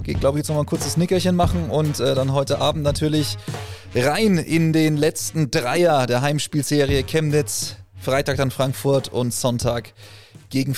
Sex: male